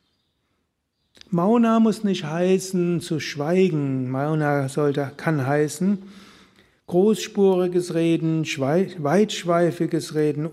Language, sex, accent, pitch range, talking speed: German, male, German, 150-180 Hz, 75 wpm